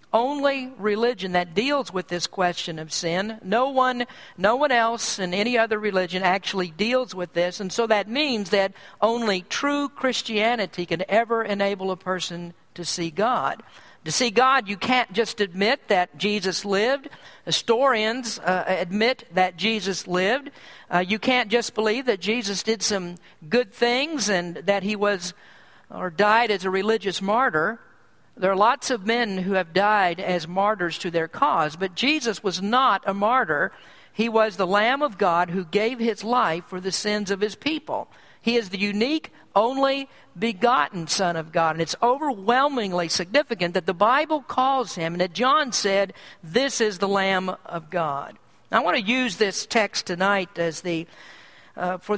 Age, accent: 50-69, American